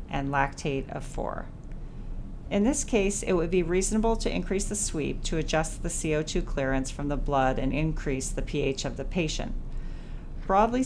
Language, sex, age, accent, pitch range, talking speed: English, female, 40-59, American, 135-180 Hz, 170 wpm